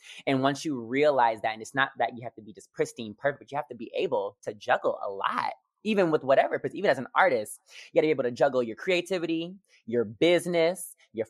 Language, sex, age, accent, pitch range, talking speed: English, male, 20-39, American, 125-170 Hz, 235 wpm